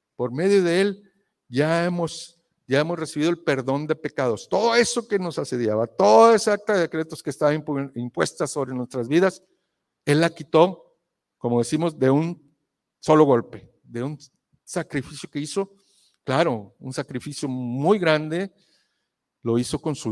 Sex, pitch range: male, 125-170 Hz